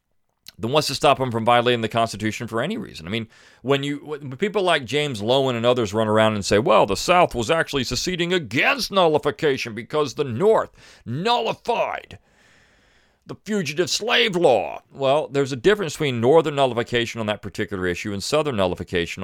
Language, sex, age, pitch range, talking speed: English, male, 40-59, 105-145 Hz, 180 wpm